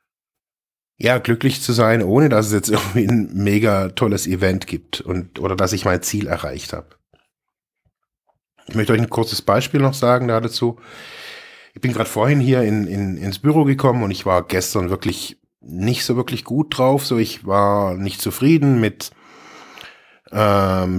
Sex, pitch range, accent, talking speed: male, 95-120 Hz, German, 165 wpm